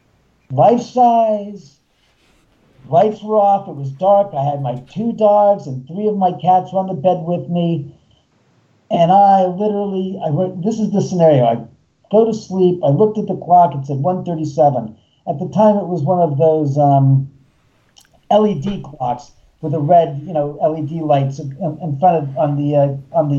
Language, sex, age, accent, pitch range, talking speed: English, male, 50-69, American, 150-205 Hz, 180 wpm